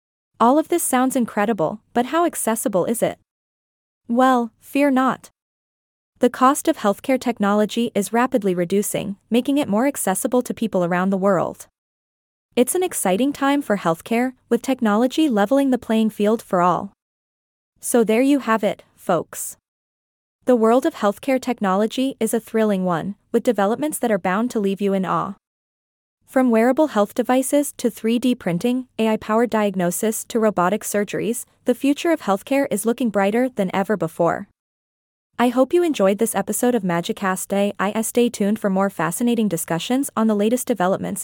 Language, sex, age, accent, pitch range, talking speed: English, female, 20-39, American, 200-255 Hz, 160 wpm